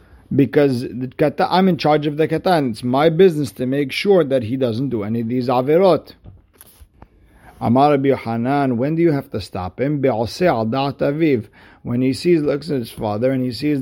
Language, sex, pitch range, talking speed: English, male, 120-145 Hz, 185 wpm